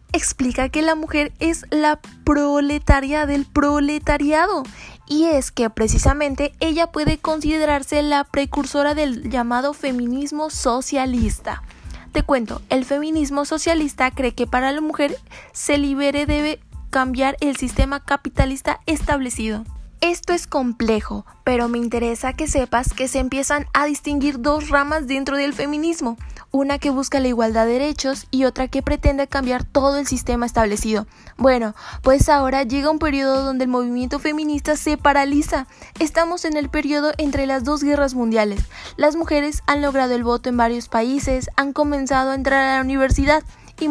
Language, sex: Spanish, female